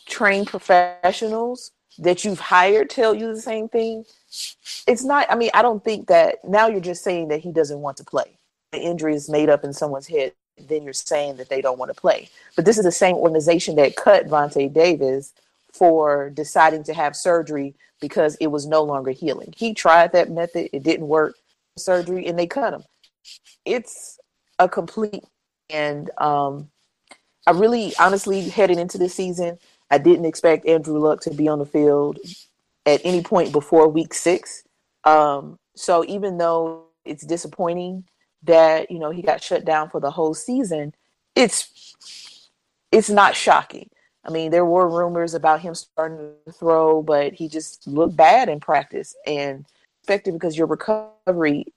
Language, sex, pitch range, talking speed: English, female, 150-185 Hz, 175 wpm